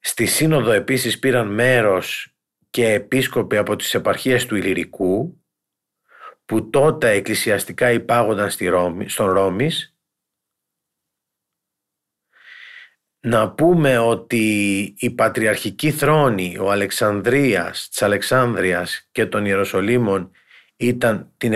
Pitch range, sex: 105-145 Hz, male